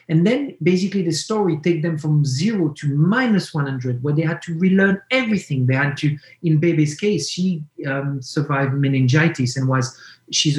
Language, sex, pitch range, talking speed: English, male, 135-170 Hz, 175 wpm